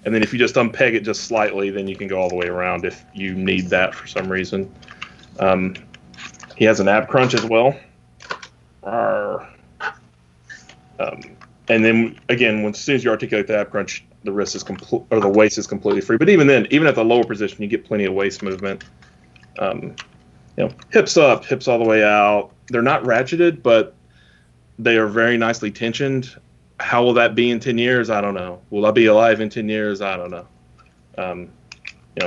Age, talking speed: 30-49, 200 wpm